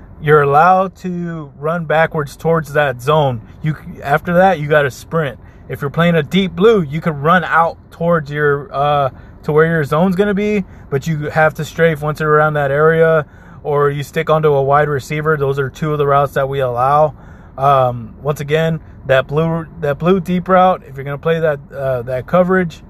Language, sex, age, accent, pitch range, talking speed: English, male, 20-39, American, 125-155 Hz, 200 wpm